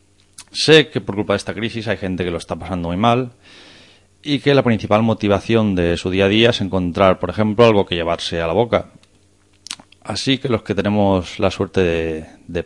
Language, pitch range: Spanish, 85-105 Hz